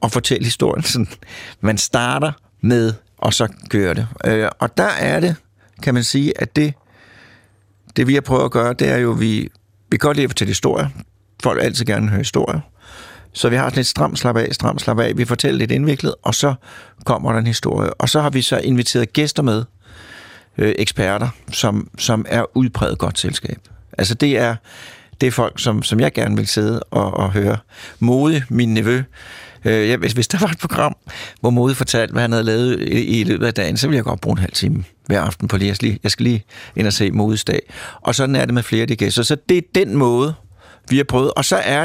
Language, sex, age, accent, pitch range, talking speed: Danish, male, 60-79, native, 105-130 Hz, 225 wpm